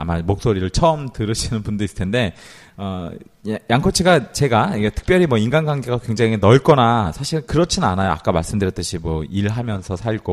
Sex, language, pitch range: male, Korean, 95-140 Hz